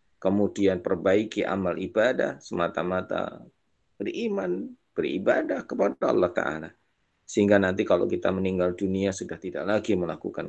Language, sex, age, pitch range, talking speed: Indonesian, male, 30-49, 95-110 Hz, 115 wpm